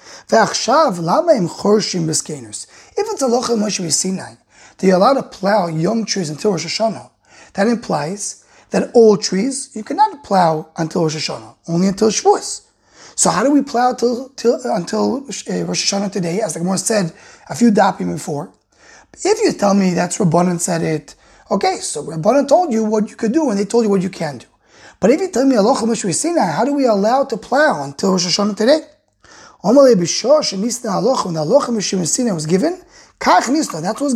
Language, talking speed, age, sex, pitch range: English, 190 wpm, 20-39, male, 175-245 Hz